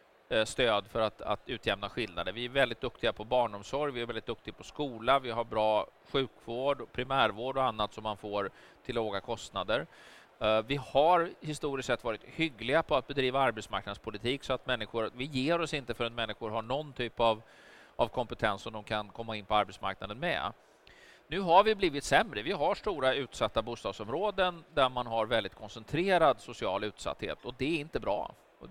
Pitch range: 110-140 Hz